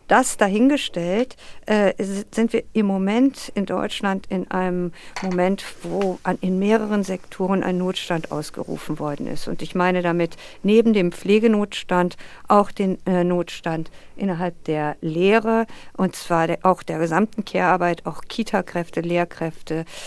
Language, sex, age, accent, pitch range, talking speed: German, female, 50-69, German, 170-200 Hz, 140 wpm